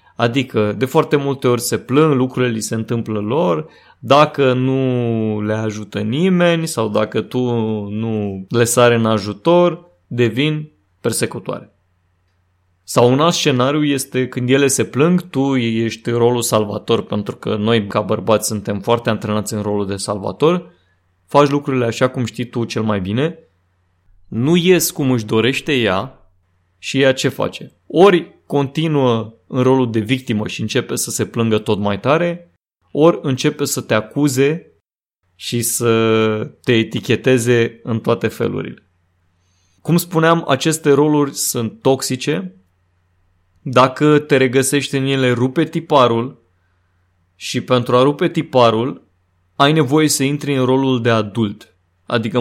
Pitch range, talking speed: 105-140 Hz, 140 wpm